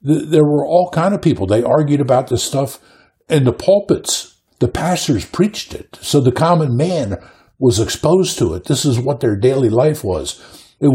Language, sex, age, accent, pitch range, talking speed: English, male, 60-79, American, 95-140 Hz, 185 wpm